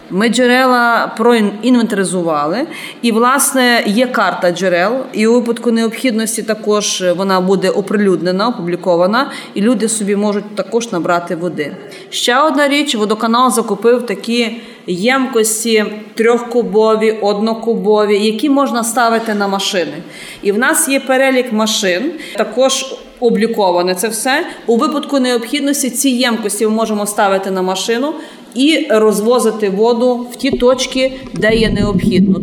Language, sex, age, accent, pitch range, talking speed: Ukrainian, female, 30-49, native, 205-255 Hz, 125 wpm